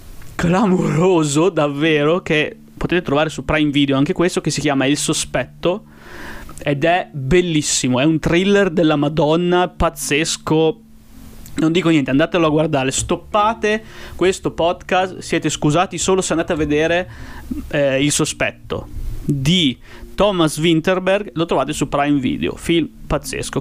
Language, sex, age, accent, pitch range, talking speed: Italian, male, 30-49, native, 140-170 Hz, 135 wpm